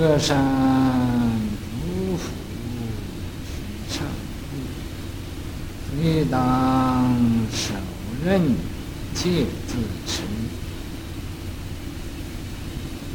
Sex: male